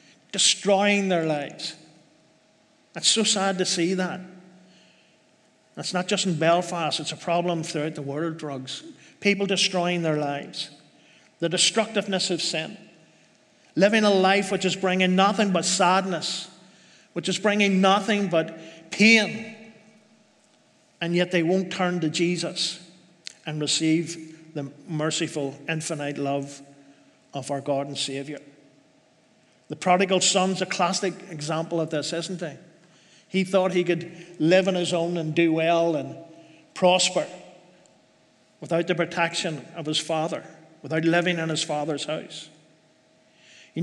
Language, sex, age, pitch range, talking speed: French, male, 50-69, 155-185 Hz, 135 wpm